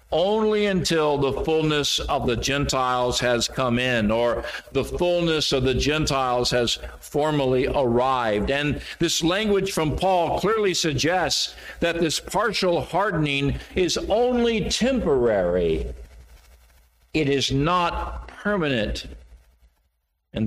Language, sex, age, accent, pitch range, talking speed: English, male, 50-69, American, 120-160 Hz, 110 wpm